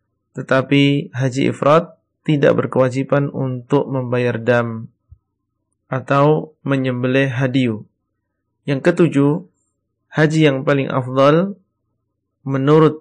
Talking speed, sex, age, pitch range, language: 85 wpm, male, 30-49, 125-145 Hz, Indonesian